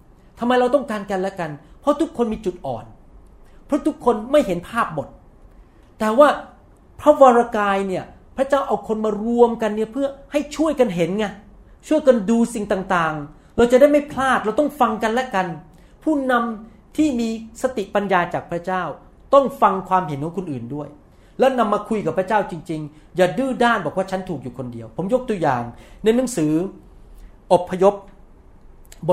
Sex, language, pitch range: male, Thai, 150-240 Hz